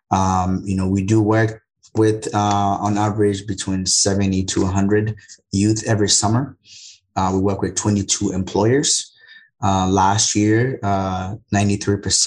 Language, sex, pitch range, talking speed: English, male, 95-110 Hz, 130 wpm